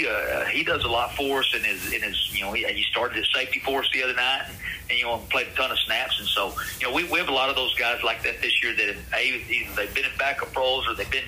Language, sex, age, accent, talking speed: English, male, 40-59, American, 325 wpm